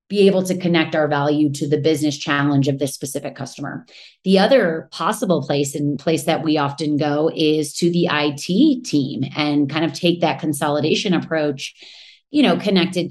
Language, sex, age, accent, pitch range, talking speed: English, female, 30-49, American, 150-185 Hz, 180 wpm